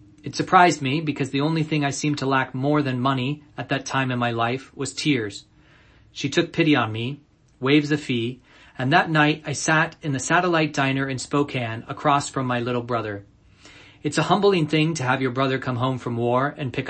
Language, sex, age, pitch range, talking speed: English, male, 40-59, 125-145 Hz, 215 wpm